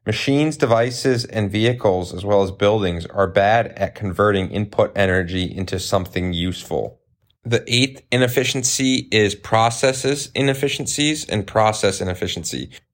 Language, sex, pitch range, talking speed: English, male, 95-115 Hz, 120 wpm